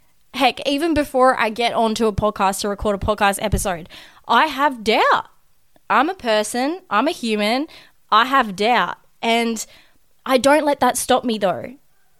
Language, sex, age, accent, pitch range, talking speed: English, female, 20-39, Australian, 215-275 Hz, 160 wpm